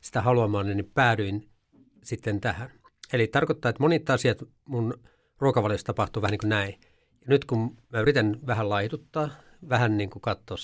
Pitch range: 105-125 Hz